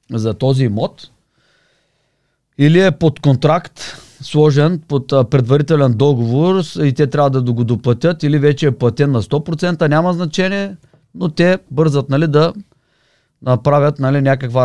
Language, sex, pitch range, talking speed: Bulgarian, male, 125-165 Hz, 135 wpm